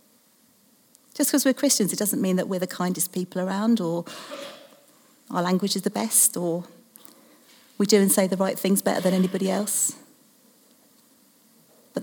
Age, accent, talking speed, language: 40-59, British, 160 wpm, English